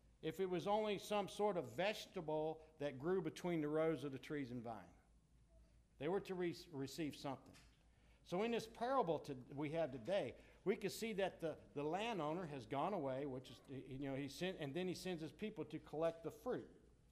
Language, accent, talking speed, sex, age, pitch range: English, American, 195 wpm, male, 60-79, 145-210 Hz